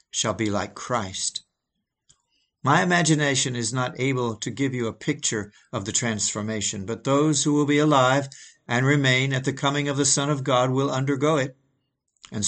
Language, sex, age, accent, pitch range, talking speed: English, male, 60-79, American, 115-150 Hz, 180 wpm